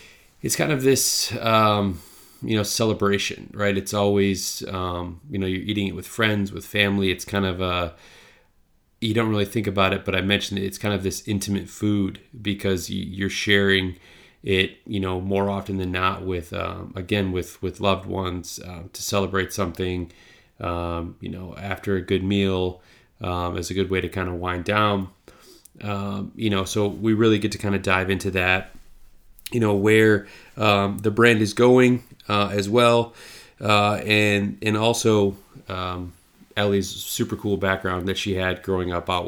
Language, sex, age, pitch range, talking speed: English, male, 30-49, 95-105 Hz, 180 wpm